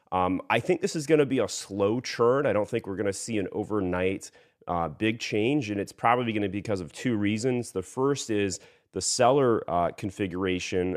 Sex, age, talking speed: male, 30-49, 220 wpm